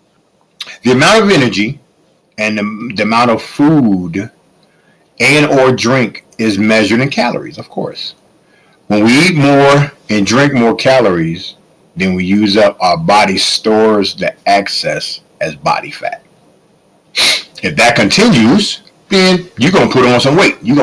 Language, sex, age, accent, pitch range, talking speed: English, male, 40-59, American, 110-150 Hz, 145 wpm